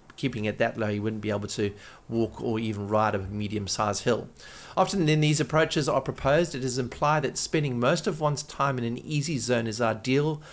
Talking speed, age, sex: 210 wpm, 40-59, male